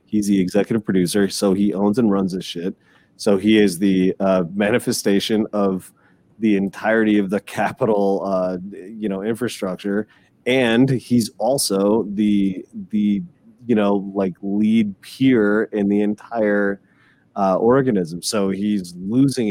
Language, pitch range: English, 105-150 Hz